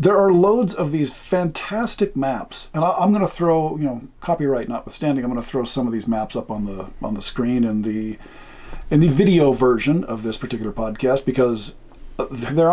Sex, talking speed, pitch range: male, 200 wpm, 120-160 Hz